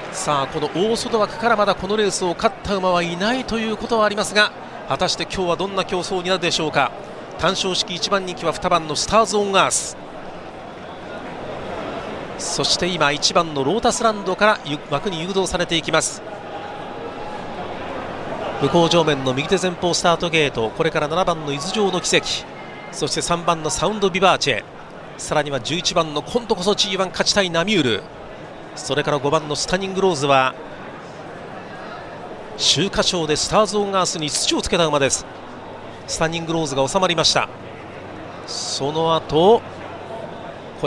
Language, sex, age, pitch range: Japanese, male, 40-59, 150-195 Hz